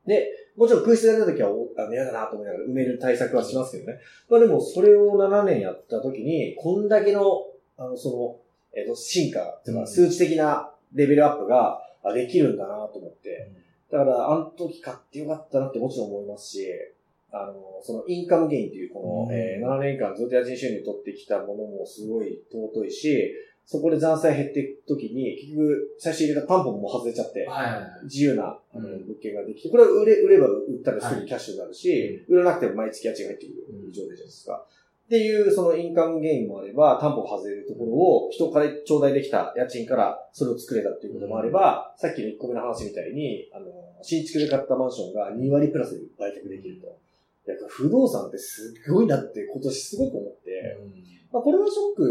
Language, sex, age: Japanese, male, 30-49